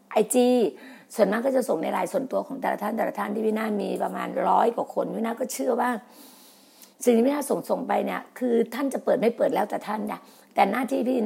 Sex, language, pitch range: female, Thai, 215-255 Hz